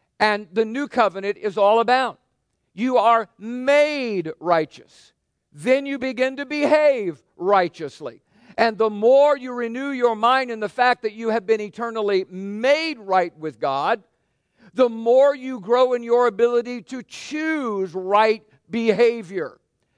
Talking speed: 140 wpm